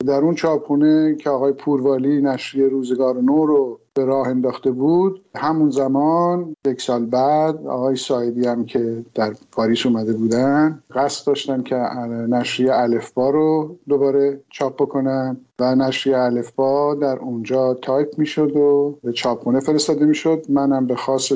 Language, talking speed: Persian, 150 wpm